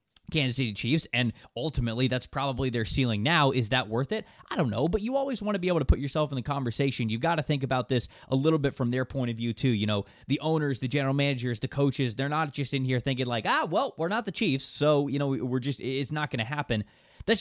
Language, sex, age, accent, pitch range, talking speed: English, male, 20-39, American, 120-150 Hz, 270 wpm